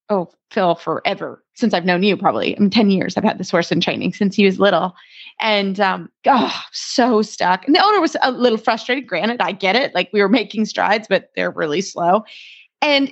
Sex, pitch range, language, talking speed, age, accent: female, 200-270 Hz, English, 220 wpm, 30-49, American